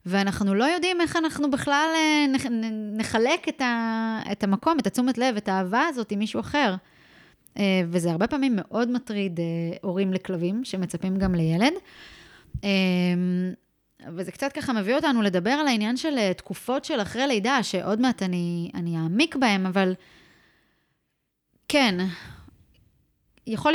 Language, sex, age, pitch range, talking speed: Hebrew, female, 20-39, 190-255 Hz, 125 wpm